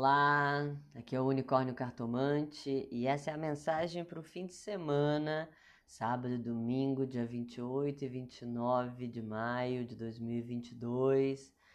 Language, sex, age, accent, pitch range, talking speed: Portuguese, female, 20-39, Brazilian, 125-150 Hz, 140 wpm